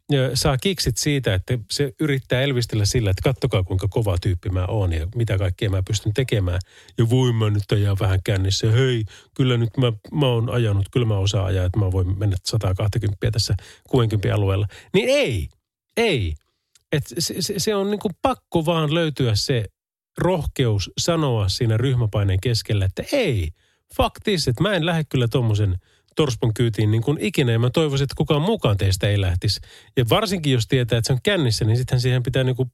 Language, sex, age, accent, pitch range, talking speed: Finnish, male, 30-49, native, 105-145 Hz, 185 wpm